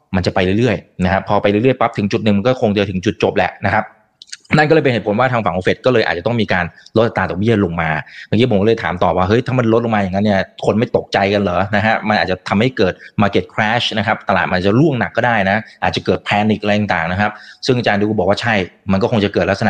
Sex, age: male, 20-39